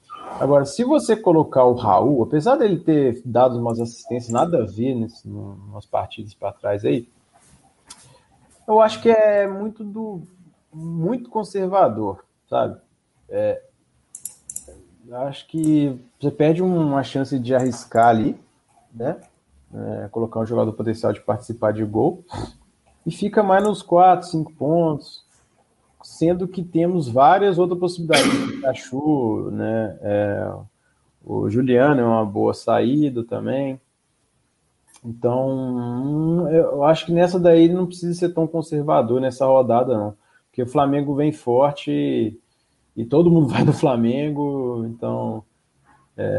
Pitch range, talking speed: 115-165 Hz, 130 wpm